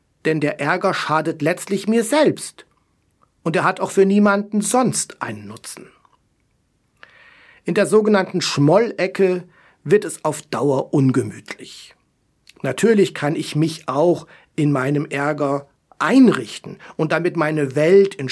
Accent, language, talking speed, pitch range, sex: German, German, 130 wpm, 150-200 Hz, male